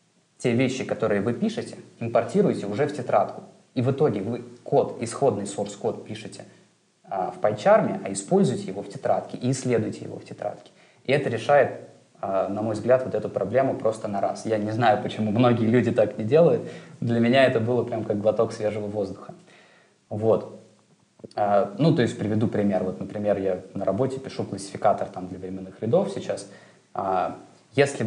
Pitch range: 110-140 Hz